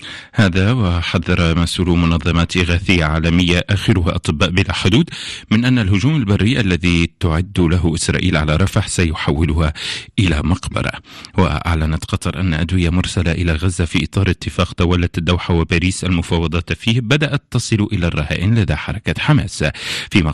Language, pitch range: Arabic, 80-100 Hz